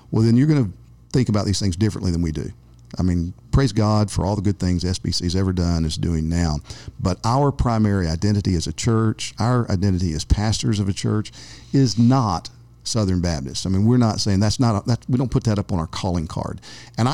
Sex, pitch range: male, 95-120 Hz